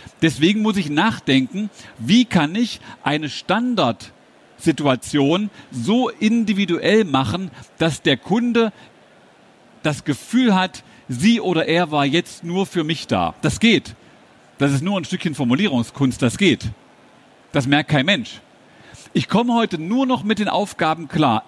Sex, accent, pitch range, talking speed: male, German, 145-200 Hz, 140 wpm